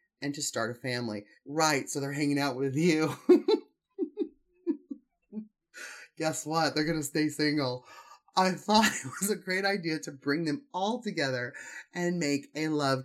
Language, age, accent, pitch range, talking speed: English, 20-39, American, 130-185 Hz, 160 wpm